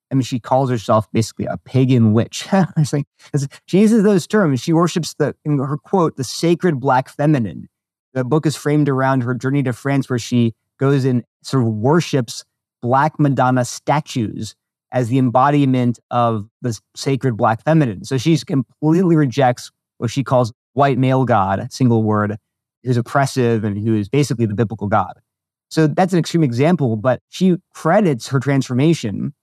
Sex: male